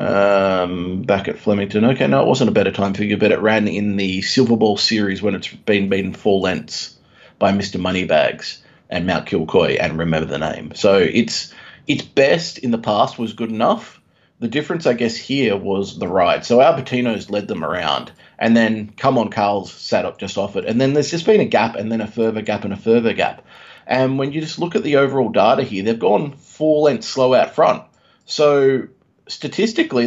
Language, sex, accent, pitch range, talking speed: English, male, Australian, 105-130 Hz, 210 wpm